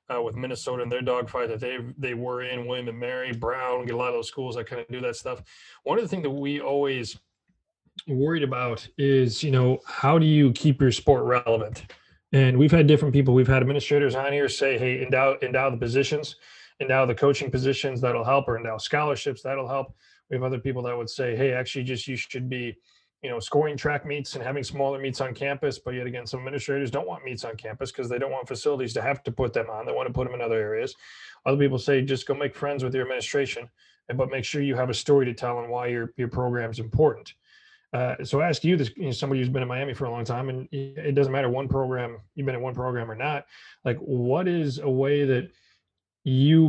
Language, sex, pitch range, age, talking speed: English, male, 125-145 Hz, 30-49, 240 wpm